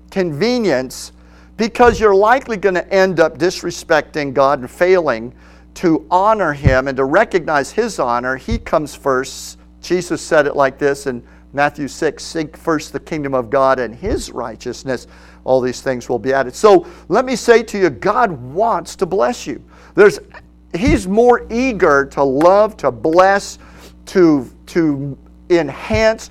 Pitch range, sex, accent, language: 130-190 Hz, male, American, English